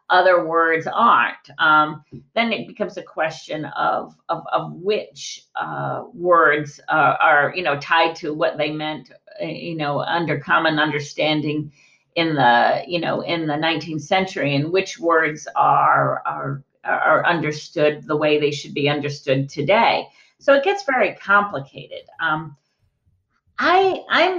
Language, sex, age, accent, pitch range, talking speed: English, female, 50-69, American, 150-230 Hz, 145 wpm